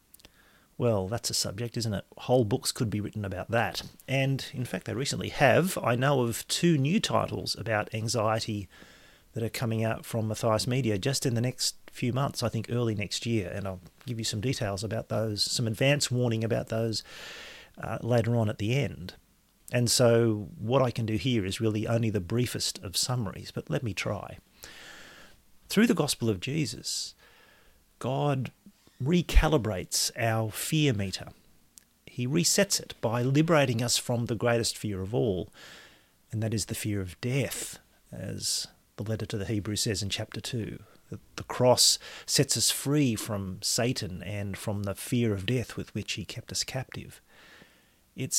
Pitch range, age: 105-130 Hz, 40-59